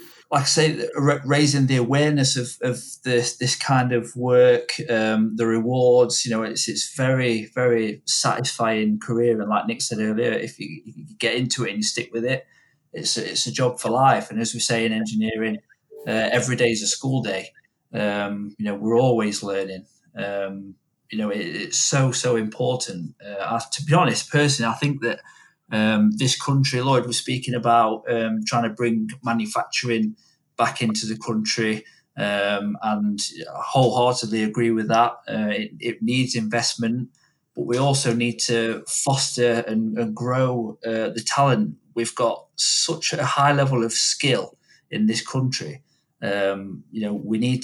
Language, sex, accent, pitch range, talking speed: English, male, British, 110-130 Hz, 175 wpm